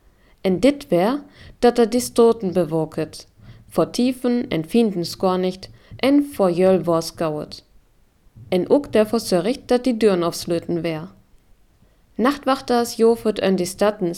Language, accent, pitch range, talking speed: German, German, 165-230 Hz, 125 wpm